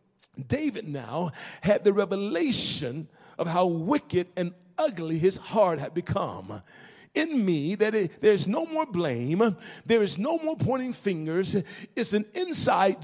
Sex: male